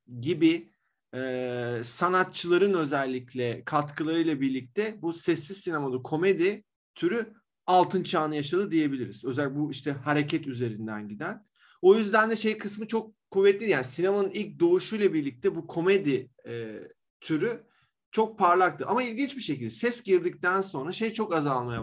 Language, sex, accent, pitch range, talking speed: Turkish, male, native, 135-195 Hz, 135 wpm